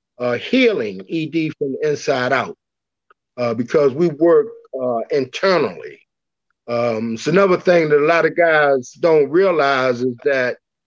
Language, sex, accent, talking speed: English, male, American, 145 wpm